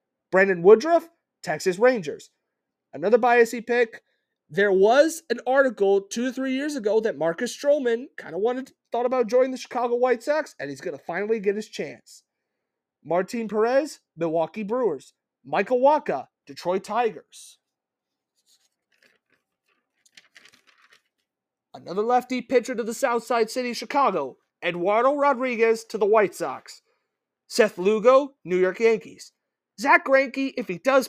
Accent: American